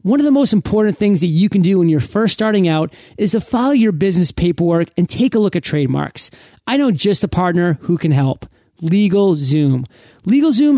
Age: 30-49